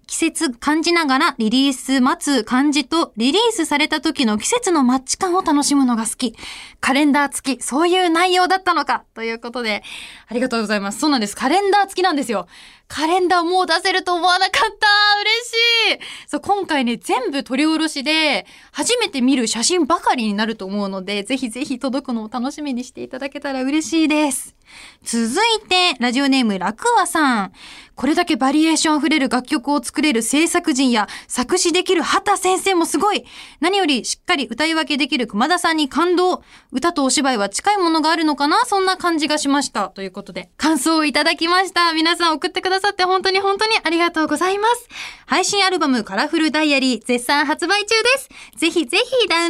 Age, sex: 20-39, female